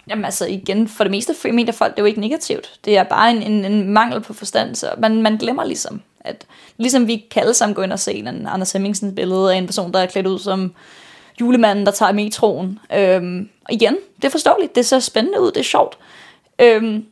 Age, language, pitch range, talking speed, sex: 20-39, Danish, 195-230 Hz, 225 wpm, female